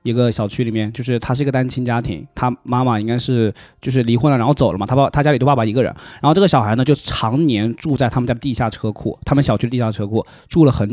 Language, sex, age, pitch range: Chinese, male, 20-39, 115-145 Hz